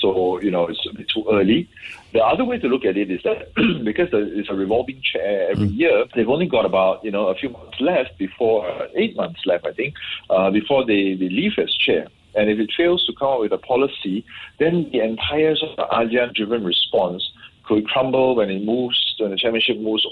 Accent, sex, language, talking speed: Malaysian, male, English, 220 wpm